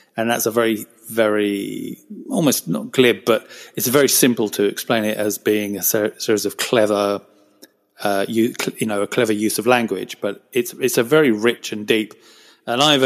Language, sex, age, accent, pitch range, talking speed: English, male, 30-49, British, 105-120 Hz, 185 wpm